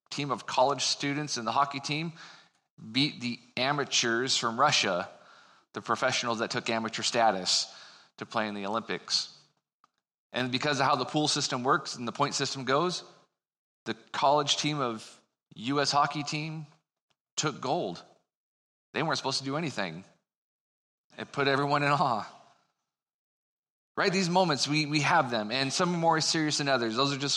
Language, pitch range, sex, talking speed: English, 125-150 Hz, male, 160 wpm